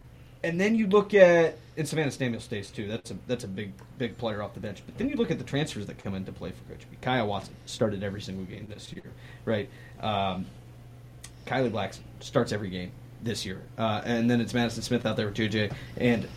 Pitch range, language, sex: 120-175 Hz, English, male